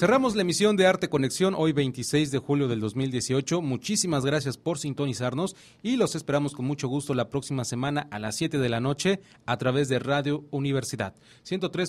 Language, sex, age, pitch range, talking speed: English, male, 30-49, 125-165 Hz, 190 wpm